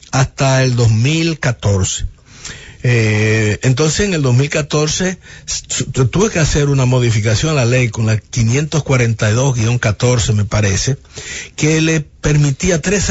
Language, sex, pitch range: English, male, 115-155 Hz